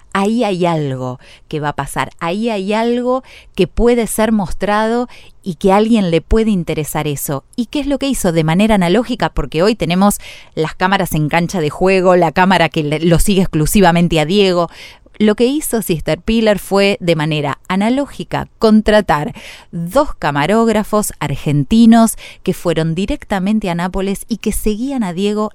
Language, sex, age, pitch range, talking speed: Spanish, female, 20-39, 155-215 Hz, 165 wpm